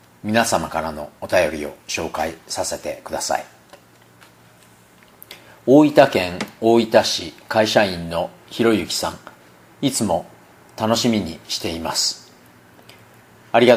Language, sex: Japanese, male